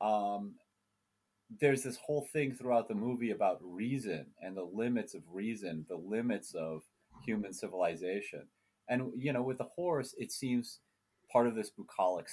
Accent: American